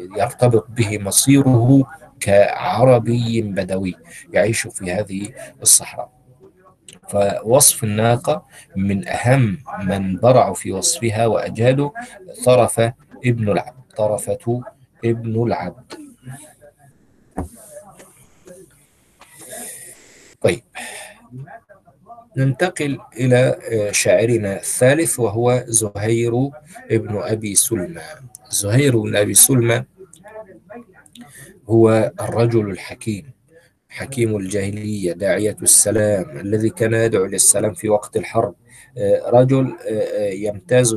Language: Arabic